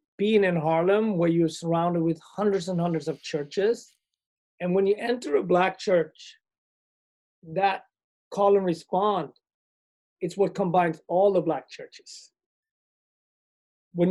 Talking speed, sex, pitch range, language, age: 130 wpm, male, 160-200 Hz, English, 30-49